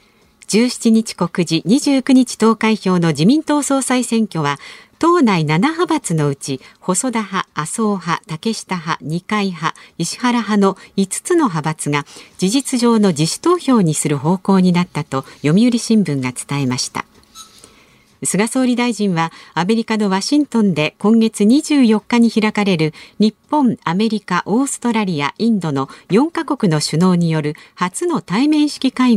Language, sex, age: Japanese, female, 50-69